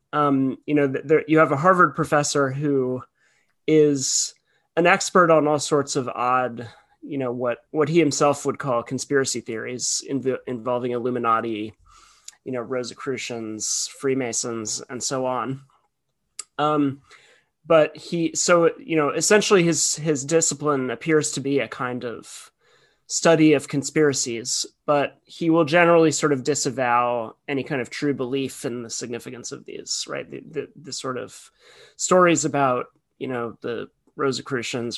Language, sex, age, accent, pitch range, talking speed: English, male, 30-49, American, 125-155 Hz, 150 wpm